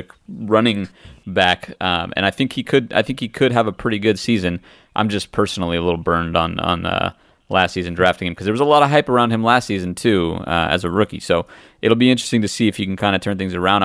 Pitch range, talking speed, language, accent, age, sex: 90-115 Hz, 260 wpm, English, American, 30-49, male